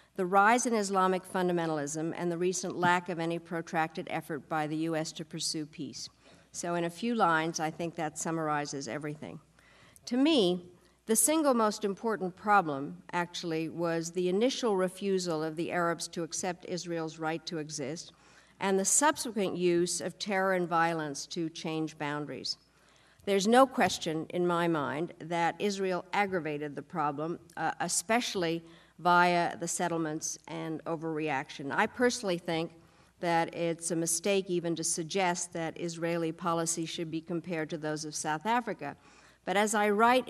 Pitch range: 160-190 Hz